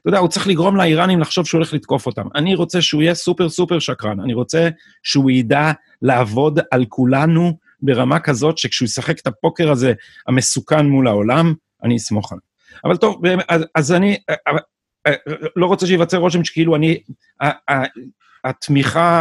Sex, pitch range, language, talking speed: male, 120-155 Hz, Hebrew, 155 wpm